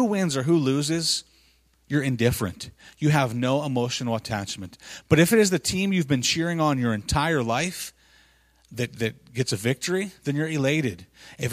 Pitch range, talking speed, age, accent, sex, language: 125-155 Hz, 170 wpm, 30-49, American, male, English